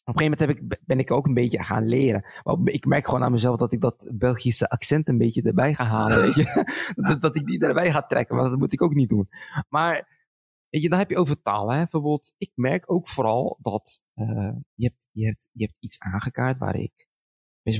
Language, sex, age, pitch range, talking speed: Dutch, male, 20-39, 110-145 Hz, 235 wpm